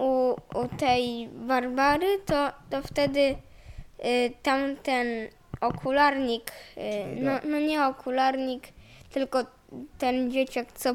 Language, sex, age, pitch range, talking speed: Polish, female, 10-29, 235-285 Hz, 105 wpm